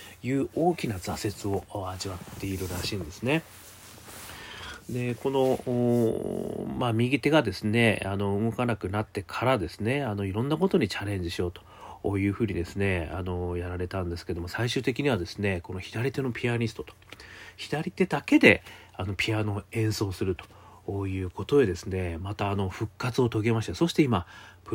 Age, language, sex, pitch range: 40-59, Japanese, male, 95-130 Hz